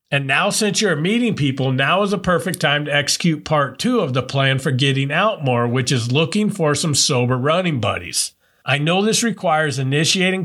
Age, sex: 50-69, male